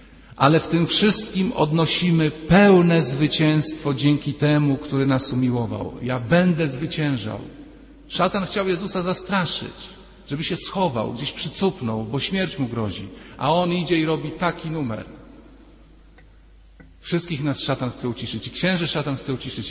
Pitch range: 125-170 Hz